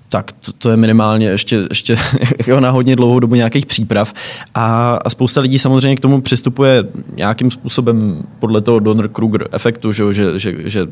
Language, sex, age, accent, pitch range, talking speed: Czech, male, 20-39, native, 105-120 Hz, 170 wpm